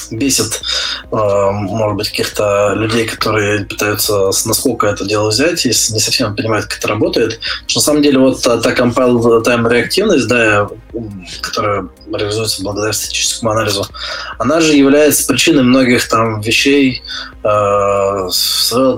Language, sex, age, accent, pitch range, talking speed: Russian, male, 20-39, native, 105-125 Hz, 130 wpm